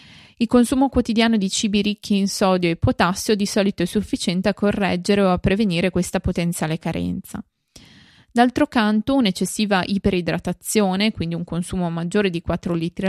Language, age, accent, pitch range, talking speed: Italian, 20-39, native, 175-215 Hz, 150 wpm